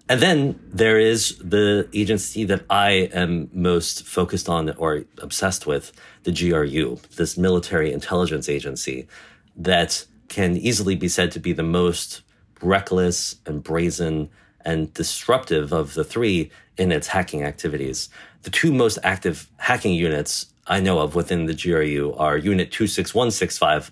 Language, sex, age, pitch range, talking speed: English, male, 30-49, 80-95 Hz, 145 wpm